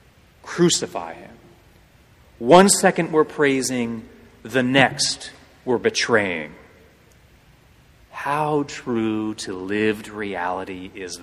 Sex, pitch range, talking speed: male, 115-170 Hz, 85 wpm